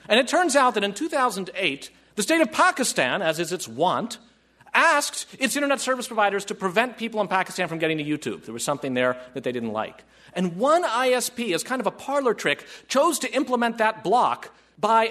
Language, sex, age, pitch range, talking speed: English, male, 40-59, 180-250 Hz, 205 wpm